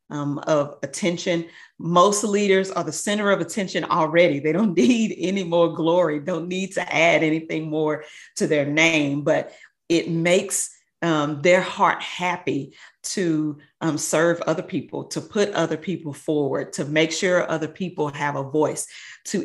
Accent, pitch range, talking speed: American, 150-185 Hz, 160 wpm